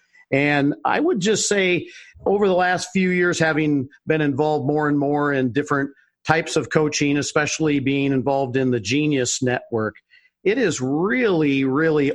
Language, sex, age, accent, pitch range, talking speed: English, male, 50-69, American, 135-165 Hz, 160 wpm